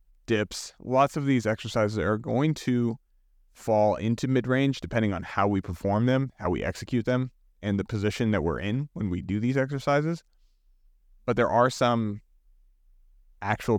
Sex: male